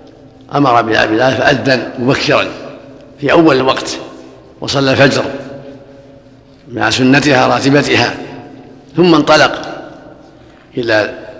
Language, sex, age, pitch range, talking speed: Arabic, male, 50-69, 130-150 Hz, 80 wpm